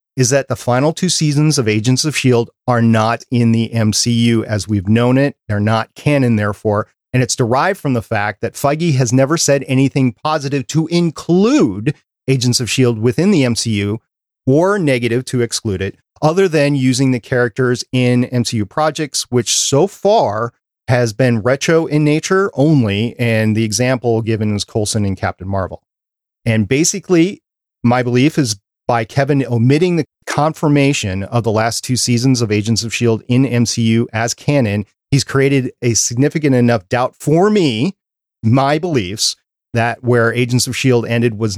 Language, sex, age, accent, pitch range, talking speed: English, male, 40-59, American, 115-140 Hz, 165 wpm